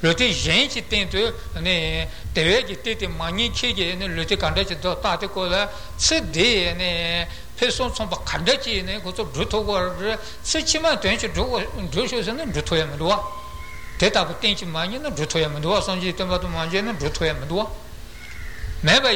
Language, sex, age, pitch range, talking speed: Italian, male, 60-79, 170-230 Hz, 100 wpm